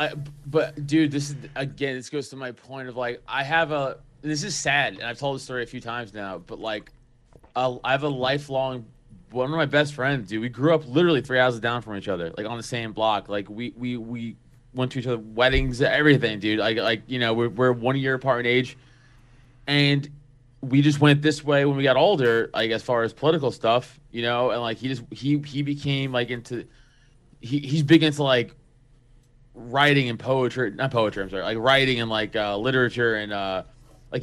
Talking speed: 220 wpm